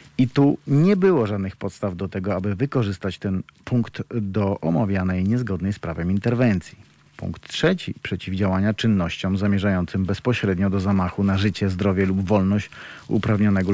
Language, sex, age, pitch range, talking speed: Polish, male, 40-59, 100-120 Hz, 140 wpm